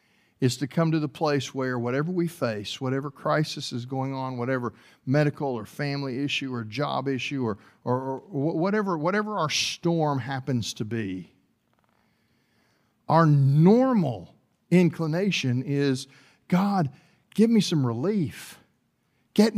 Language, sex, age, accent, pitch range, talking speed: English, male, 50-69, American, 125-175 Hz, 130 wpm